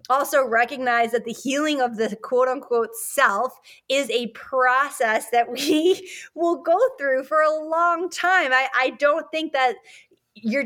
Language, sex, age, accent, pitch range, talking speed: English, female, 20-39, American, 215-265 Hz, 160 wpm